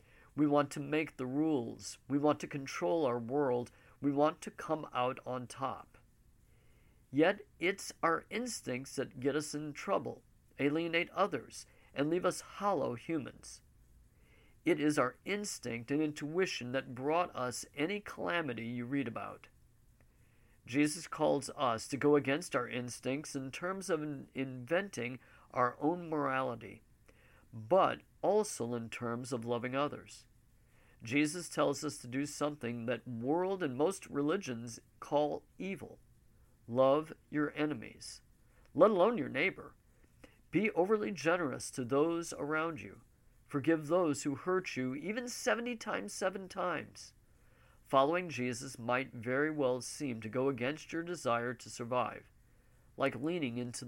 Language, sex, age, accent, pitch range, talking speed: English, male, 50-69, American, 120-155 Hz, 140 wpm